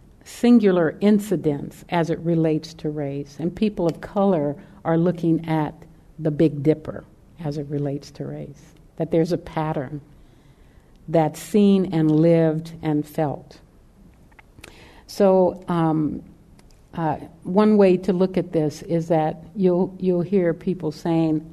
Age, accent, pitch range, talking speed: 50-69, American, 150-175 Hz, 135 wpm